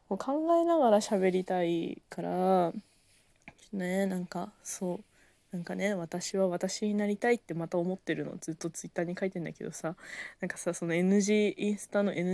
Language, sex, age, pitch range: Japanese, female, 20-39, 175-225 Hz